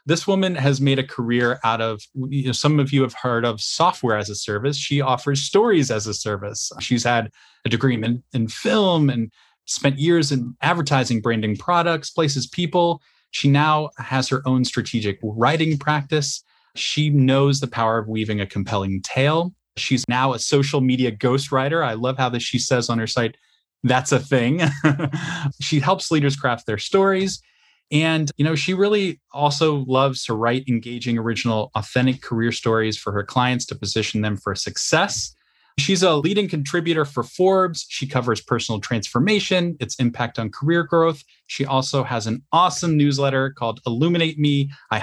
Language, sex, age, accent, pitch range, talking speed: English, male, 20-39, American, 115-155 Hz, 170 wpm